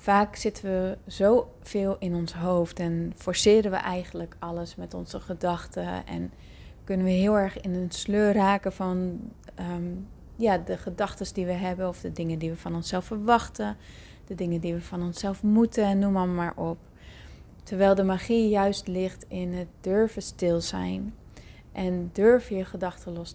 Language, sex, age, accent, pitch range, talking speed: Dutch, female, 30-49, Dutch, 170-205 Hz, 165 wpm